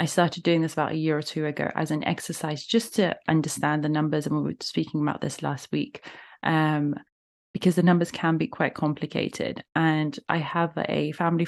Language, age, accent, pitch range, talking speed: English, 20-39, British, 155-195 Hz, 205 wpm